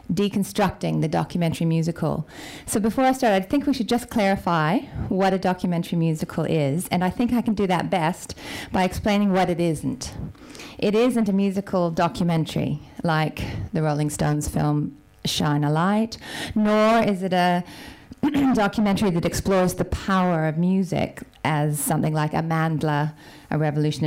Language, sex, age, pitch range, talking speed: English, female, 40-59, 160-200 Hz, 155 wpm